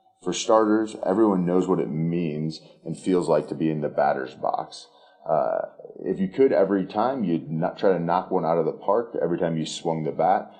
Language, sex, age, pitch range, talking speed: English, male, 30-49, 75-90 Hz, 215 wpm